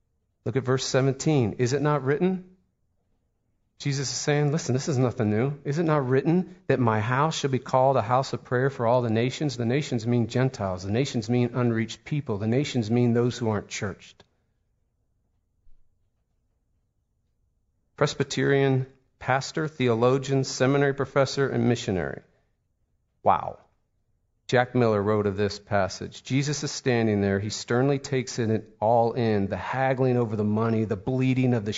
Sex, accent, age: male, American, 40-59